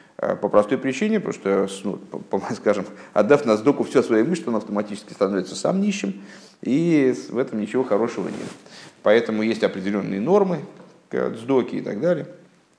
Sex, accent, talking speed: male, native, 145 wpm